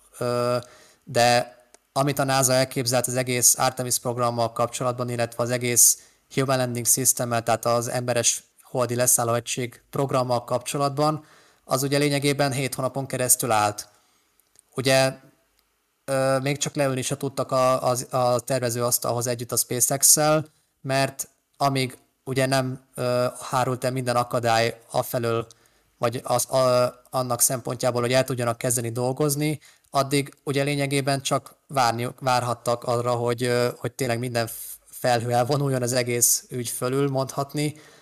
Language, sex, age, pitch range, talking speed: Hungarian, male, 30-49, 120-135 Hz, 130 wpm